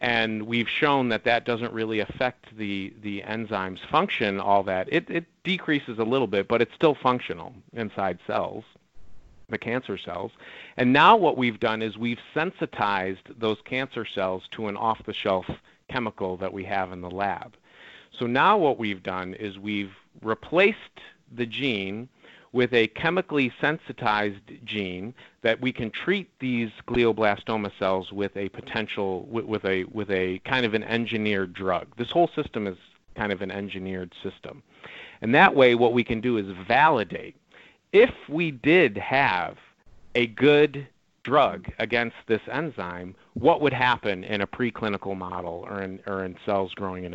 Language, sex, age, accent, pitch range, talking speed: English, male, 40-59, American, 100-125 Hz, 160 wpm